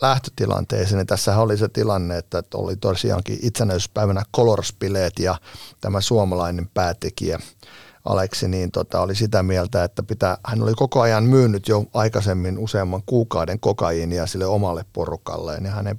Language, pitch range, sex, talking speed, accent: Finnish, 100-120 Hz, male, 140 wpm, native